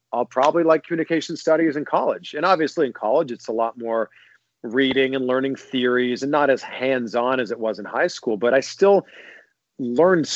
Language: English